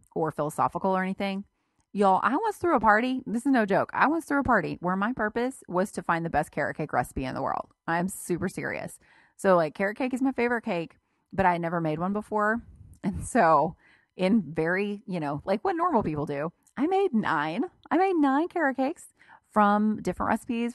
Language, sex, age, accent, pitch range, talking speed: English, female, 30-49, American, 165-225 Hz, 210 wpm